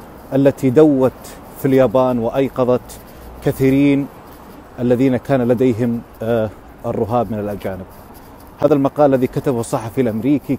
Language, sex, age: Arabic, male, 30-49